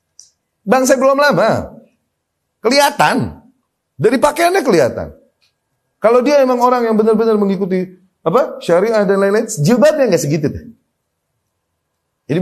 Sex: male